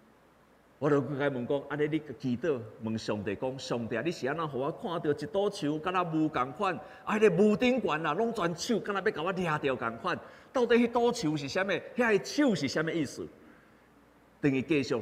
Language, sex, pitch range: Chinese, male, 155-245 Hz